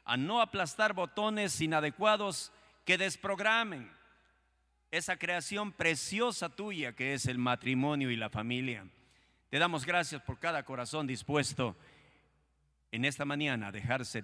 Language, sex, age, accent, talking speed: Spanish, male, 50-69, Mexican, 125 wpm